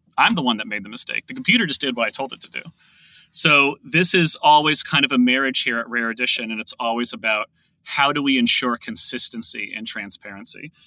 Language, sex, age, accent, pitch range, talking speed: English, male, 30-49, American, 115-160 Hz, 220 wpm